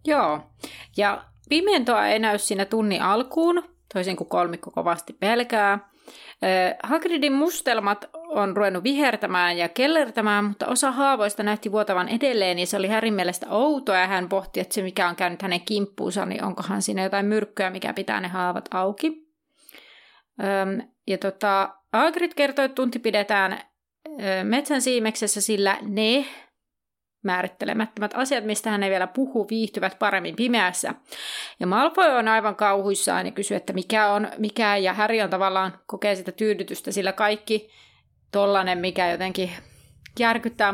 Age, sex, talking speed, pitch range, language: 30-49, female, 145 wpm, 195-245 Hz, Finnish